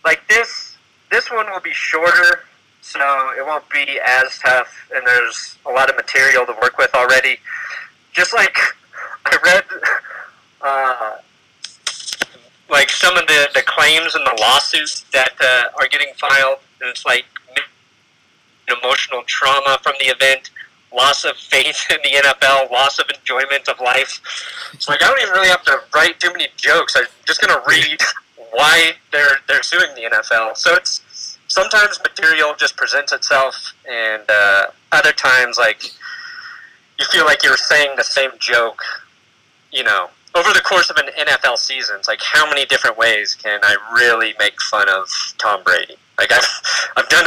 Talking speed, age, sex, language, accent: 165 wpm, 30-49, male, English, American